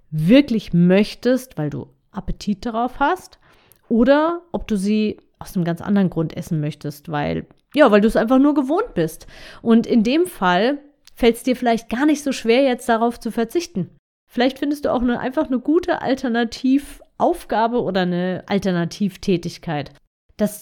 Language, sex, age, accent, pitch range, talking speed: German, female, 30-49, German, 180-250 Hz, 165 wpm